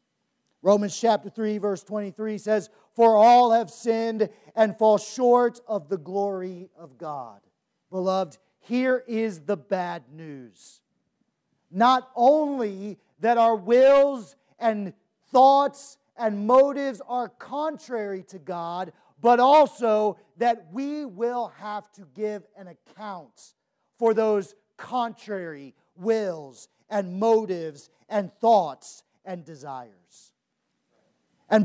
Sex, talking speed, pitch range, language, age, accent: male, 110 wpm, 190-245 Hz, English, 40-59, American